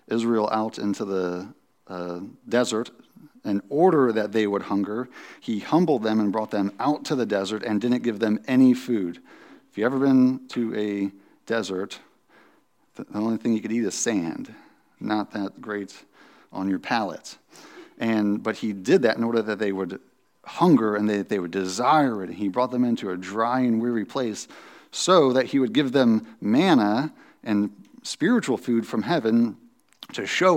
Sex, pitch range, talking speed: male, 100-120 Hz, 175 wpm